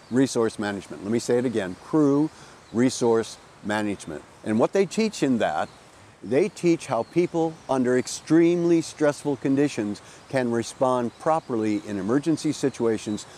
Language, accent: English, American